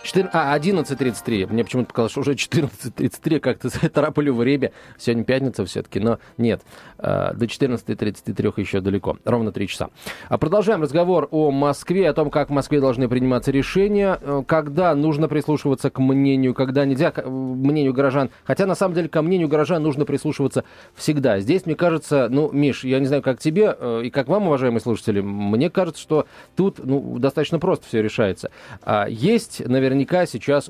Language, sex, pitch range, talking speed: Russian, male, 120-155 Hz, 165 wpm